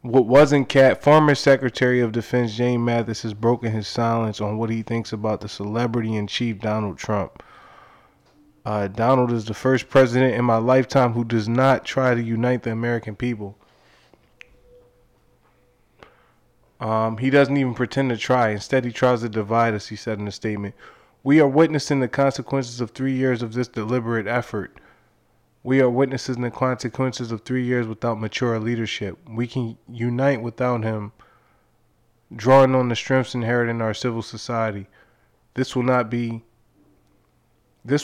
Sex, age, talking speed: male, 20-39, 160 wpm